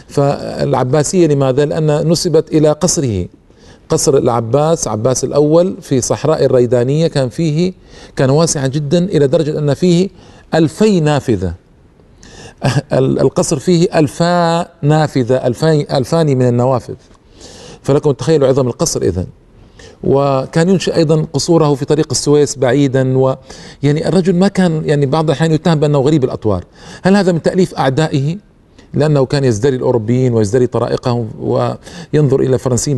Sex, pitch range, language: male, 130-160 Hz, Arabic